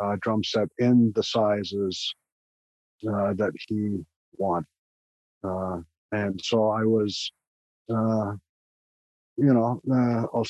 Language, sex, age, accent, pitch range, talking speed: English, male, 50-69, American, 95-115 Hz, 115 wpm